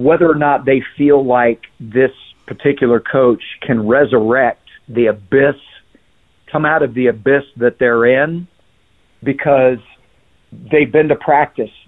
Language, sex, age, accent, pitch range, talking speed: English, male, 50-69, American, 120-145 Hz, 130 wpm